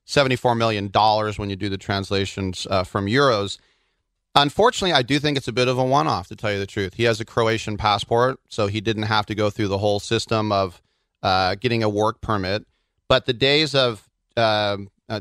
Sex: male